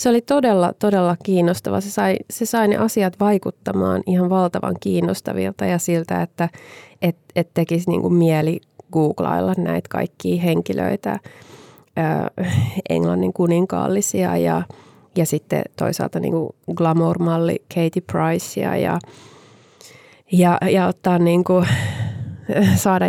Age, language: 20-39, Finnish